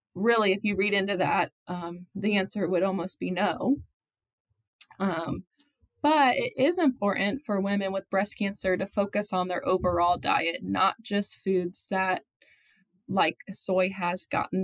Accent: American